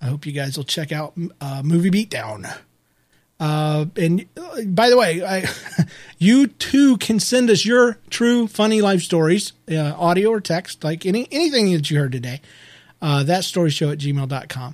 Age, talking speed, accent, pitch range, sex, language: 40-59, 180 wpm, American, 145-210 Hz, male, English